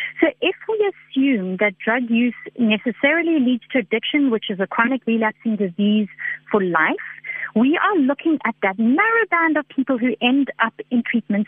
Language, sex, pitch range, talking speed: English, female, 220-285 Hz, 175 wpm